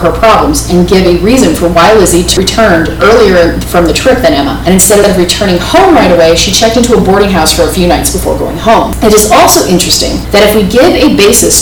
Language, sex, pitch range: English, female, 170-230 Hz